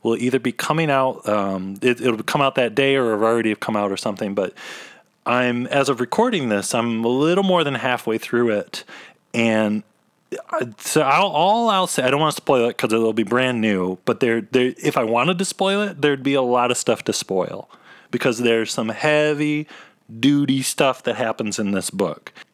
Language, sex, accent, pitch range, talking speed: English, male, American, 105-135 Hz, 200 wpm